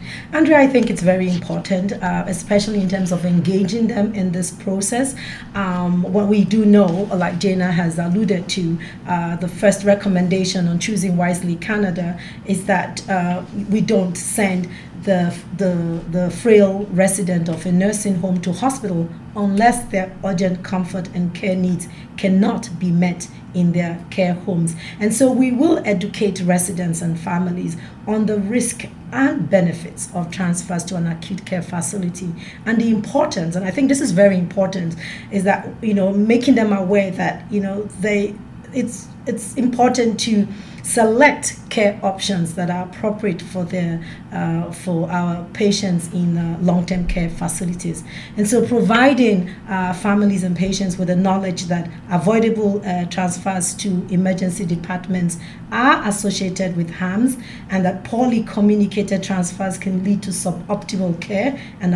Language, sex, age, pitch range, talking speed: English, female, 40-59, 180-205 Hz, 155 wpm